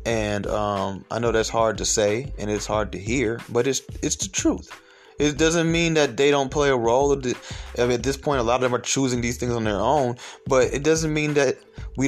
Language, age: English, 20-39